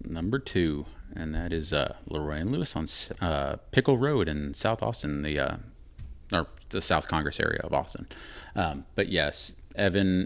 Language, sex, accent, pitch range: English, male, American, 75-90 Hz